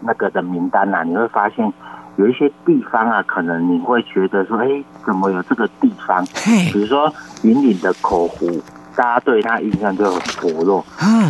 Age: 50-69